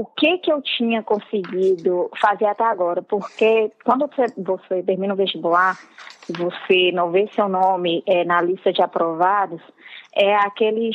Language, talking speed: Portuguese, 140 wpm